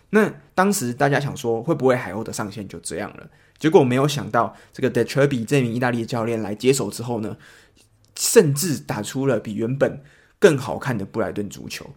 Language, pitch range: Chinese, 115-145 Hz